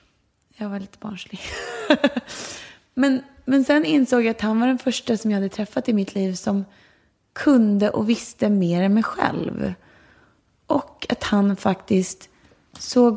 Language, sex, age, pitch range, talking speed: English, female, 30-49, 190-245 Hz, 155 wpm